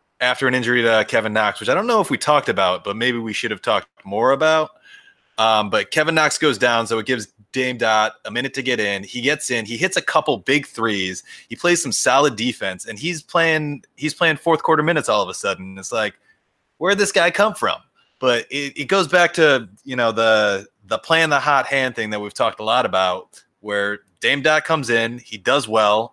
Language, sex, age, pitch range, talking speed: English, male, 30-49, 110-155 Hz, 230 wpm